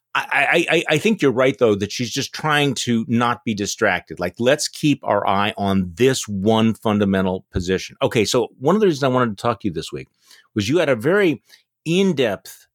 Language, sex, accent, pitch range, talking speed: English, male, American, 100-135 Hz, 210 wpm